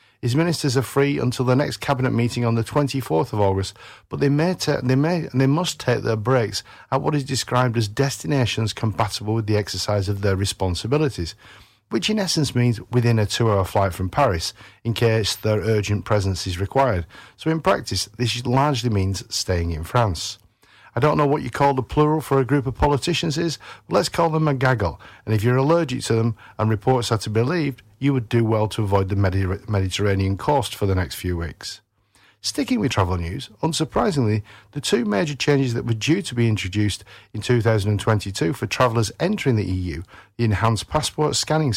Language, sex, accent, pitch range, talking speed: English, male, British, 105-135 Hz, 195 wpm